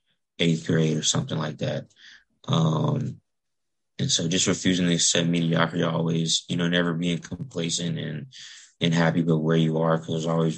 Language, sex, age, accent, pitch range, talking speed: English, male, 20-39, American, 80-90 Hz, 170 wpm